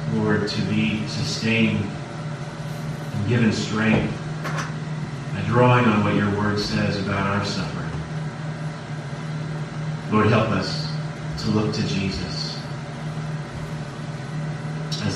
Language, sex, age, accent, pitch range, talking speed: English, male, 40-59, American, 150-170 Hz, 100 wpm